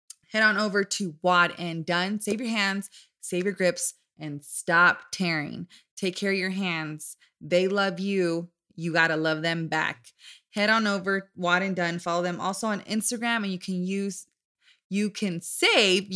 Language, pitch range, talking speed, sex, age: English, 170-210 Hz, 175 wpm, female, 20-39